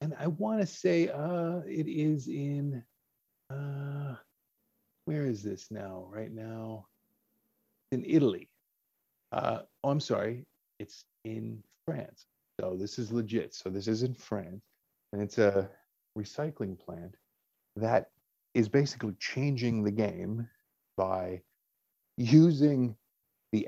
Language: English